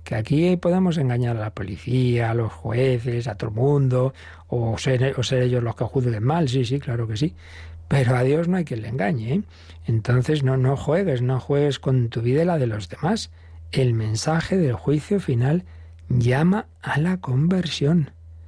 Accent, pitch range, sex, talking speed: Spanish, 115-150 Hz, male, 195 wpm